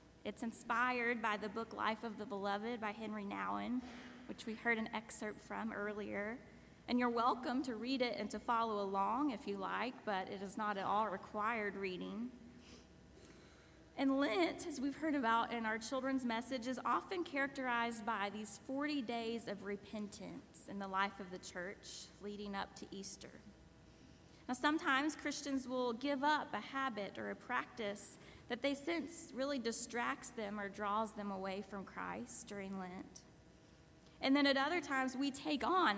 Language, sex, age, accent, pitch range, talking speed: English, female, 20-39, American, 205-265 Hz, 170 wpm